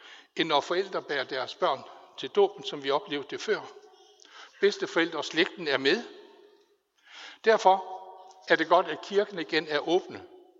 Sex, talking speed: male, 155 wpm